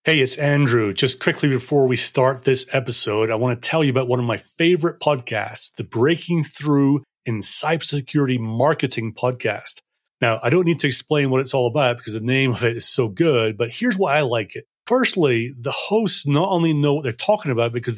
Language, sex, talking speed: English, male, 210 wpm